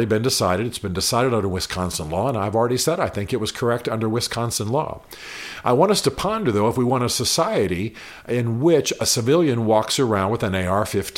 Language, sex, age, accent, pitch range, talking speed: English, male, 50-69, American, 95-120 Hz, 215 wpm